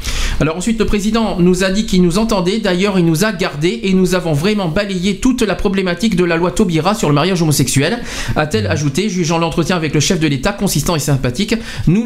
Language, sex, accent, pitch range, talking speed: French, male, French, 155-210 Hz, 220 wpm